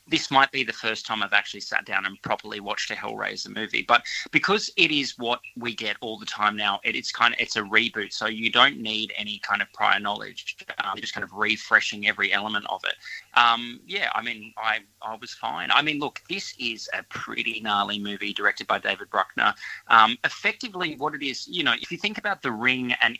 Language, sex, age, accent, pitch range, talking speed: English, male, 20-39, Australian, 105-125 Hz, 230 wpm